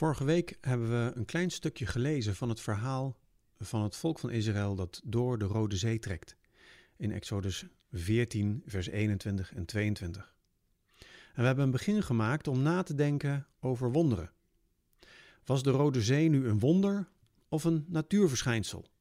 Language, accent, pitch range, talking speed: Dutch, Dutch, 110-150 Hz, 160 wpm